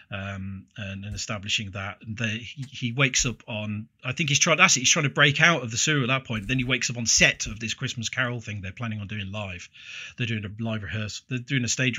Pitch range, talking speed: 105-130 Hz, 255 wpm